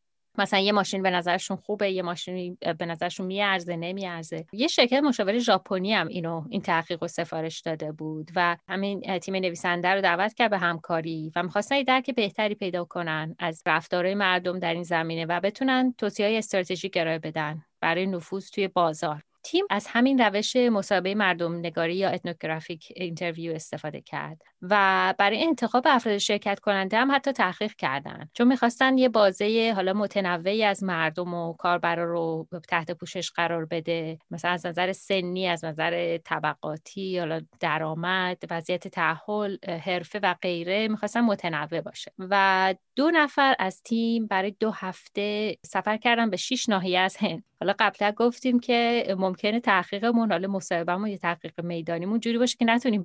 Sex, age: female, 30-49